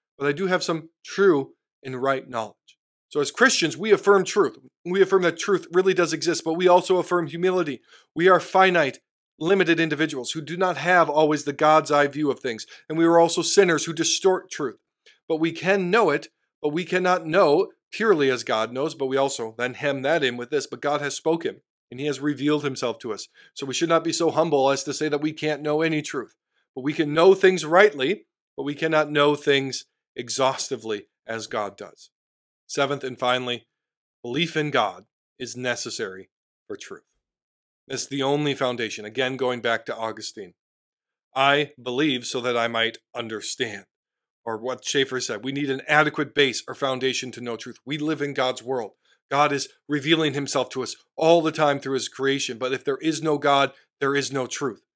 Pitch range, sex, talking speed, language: 130-165 Hz, male, 200 wpm, English